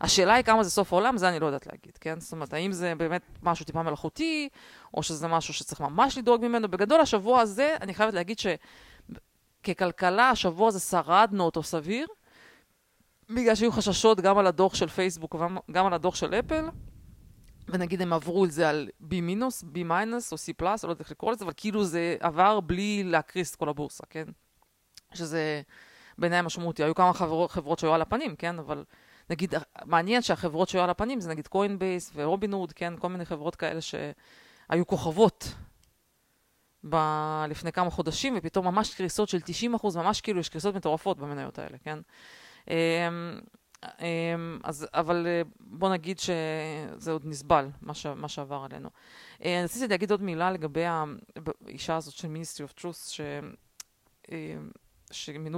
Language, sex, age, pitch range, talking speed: Hebrew, female, 20-39, 160-200 Hz, 150 wpm